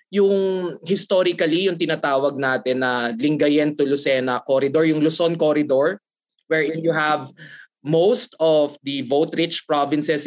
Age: 20-39